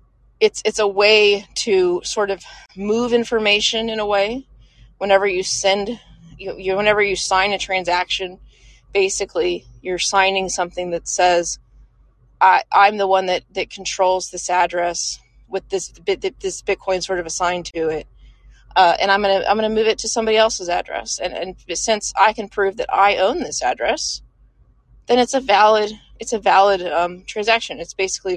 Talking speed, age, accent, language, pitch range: 170 wpm, 20-39, American, English, 180-220 Hz